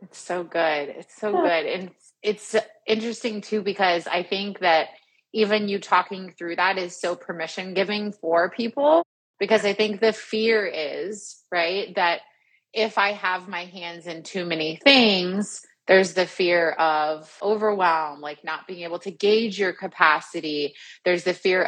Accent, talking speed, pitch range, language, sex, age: American, 160 wpm, 165-200 Hz, English, female, 30-49